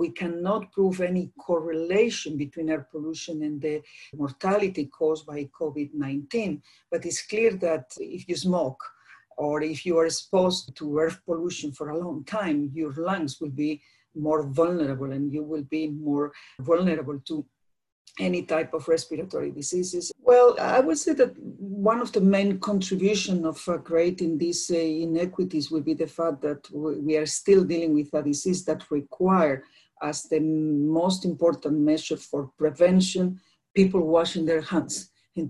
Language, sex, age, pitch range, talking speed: English, female, 50-69, 145-175 Hz, 155 wpm